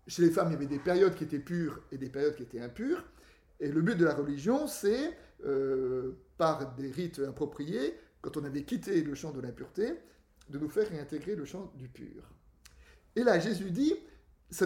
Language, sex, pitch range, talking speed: French, male, 135-185 Hz, 205 wpm